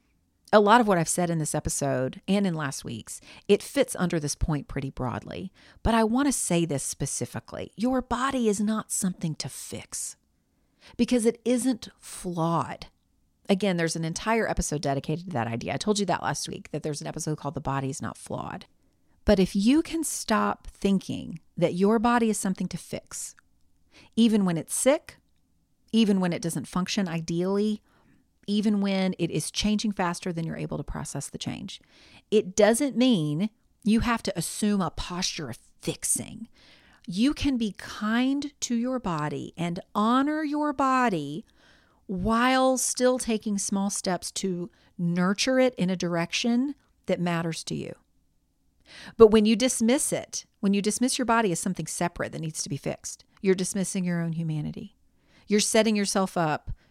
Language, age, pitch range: English, 40-59, 165-225 Hz